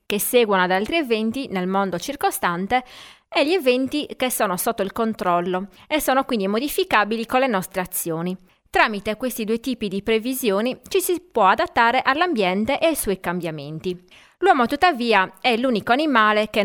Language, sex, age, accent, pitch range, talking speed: Italian, female, 20-39, native, 185-255 Hz, 160 wpm